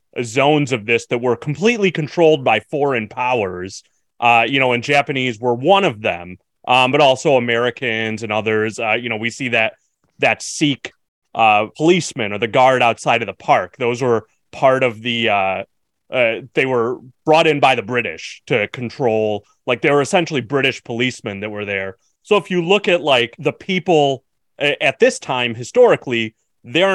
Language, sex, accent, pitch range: English, male, American, 120-155 Hz